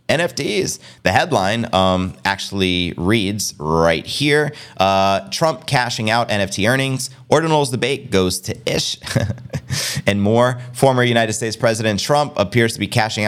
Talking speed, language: 135 wpm, English